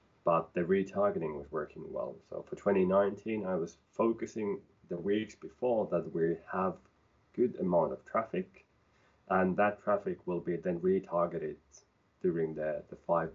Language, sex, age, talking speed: English, male, 30-49, 150 wpm